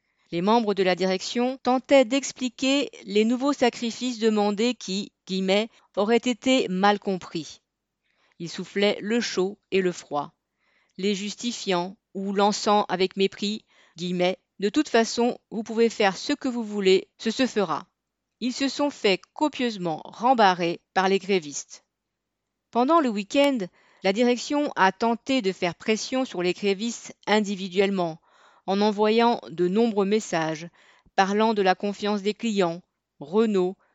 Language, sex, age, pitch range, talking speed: French, female, 40-59, 185-230 Hz, 140 wpm